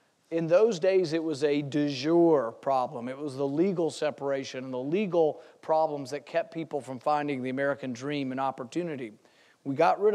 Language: English